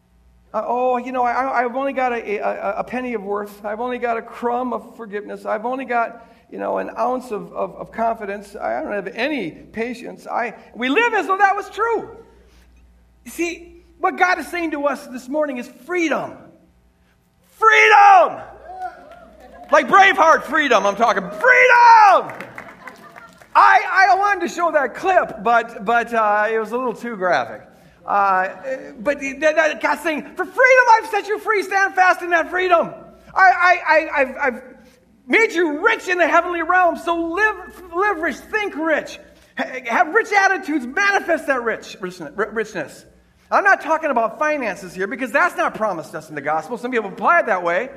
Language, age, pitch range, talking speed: English, 50-69, 230-360 Hz, 175 wpm